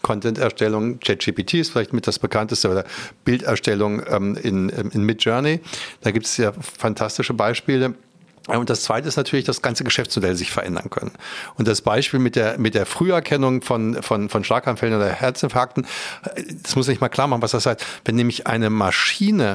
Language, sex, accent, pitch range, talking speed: German, male, German, 110-140 Hz, 175 wpm